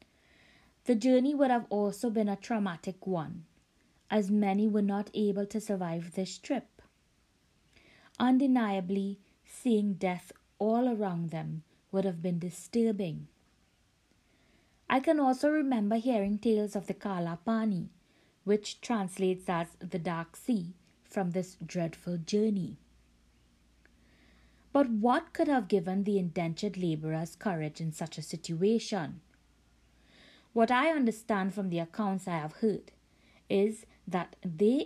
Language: English